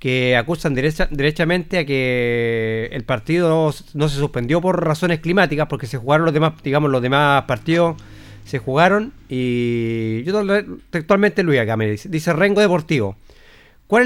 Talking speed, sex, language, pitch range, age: 155 wpm, male, Spanish, 140-185 Hz, 40-59